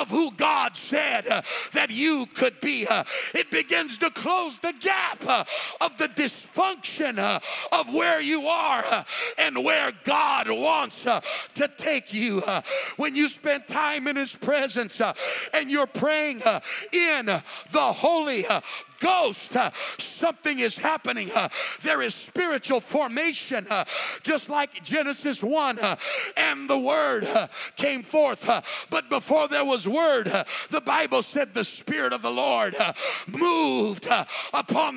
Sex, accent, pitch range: male, American, 265-315 Hz